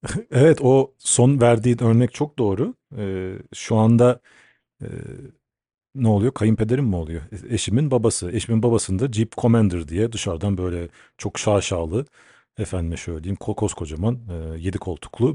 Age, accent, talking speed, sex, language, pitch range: 40-59, native, 120 wpm, male, Turkish, 95-130 Hz